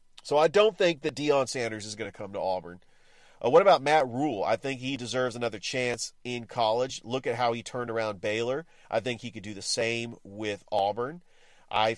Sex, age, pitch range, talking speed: male, 40-59, 115-150 Hz, 215 wpm